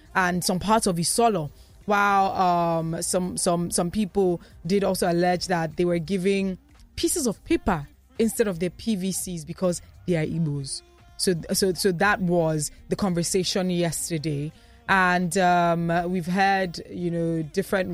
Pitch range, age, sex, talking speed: 170-195 Hz, 20-39, female, 145 wpm